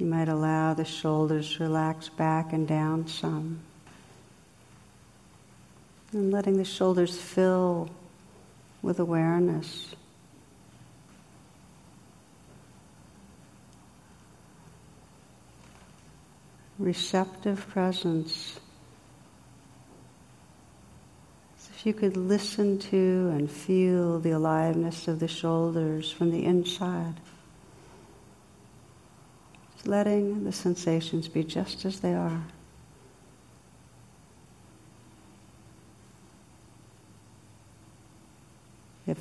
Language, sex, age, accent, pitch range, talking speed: English, female, 60-79, American, 155-180 Hz, 70 wpm